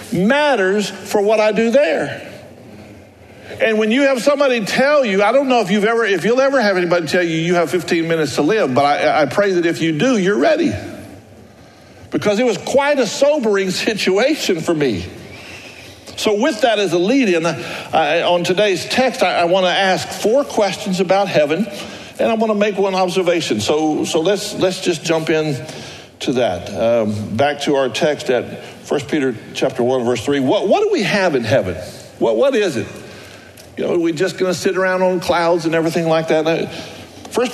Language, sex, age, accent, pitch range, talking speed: English, male, 60-79, American, 160-215 Hz, 200 wpm